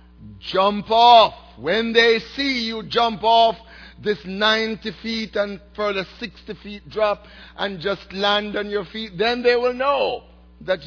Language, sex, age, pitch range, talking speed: English, male, 60-79, 145-235 Hz, 150 wpm